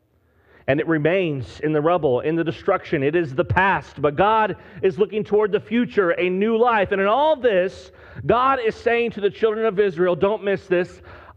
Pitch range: 140-210 Hz